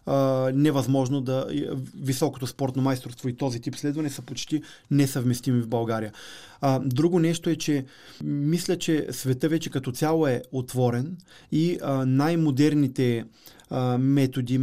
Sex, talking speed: male, 140 wpm